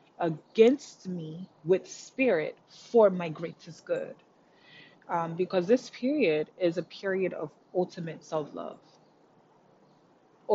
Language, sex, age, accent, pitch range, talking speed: English, female, 20-39, American, 160-195 Hz, 100 wpm